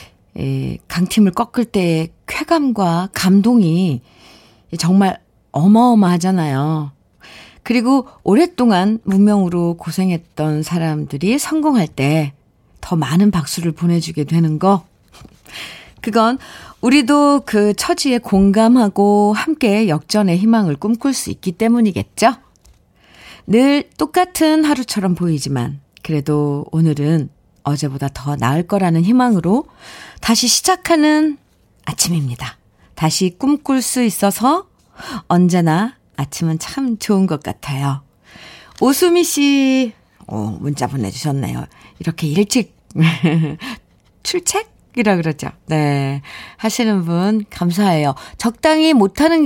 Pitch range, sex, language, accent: 155-240 Hz, female, Korean, native